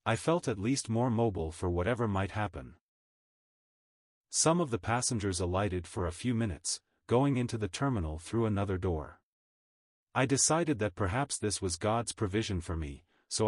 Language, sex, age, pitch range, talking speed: English, male, 40-59, 95-125 Hz, 165 wpm